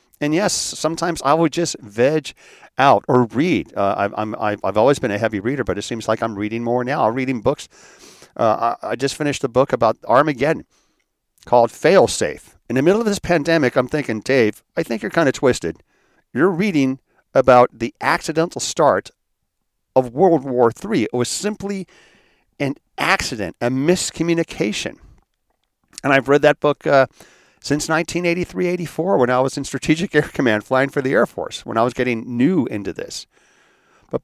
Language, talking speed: English, 180 wpm